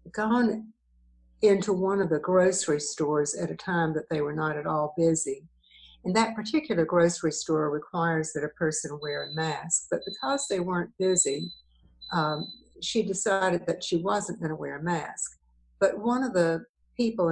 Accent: American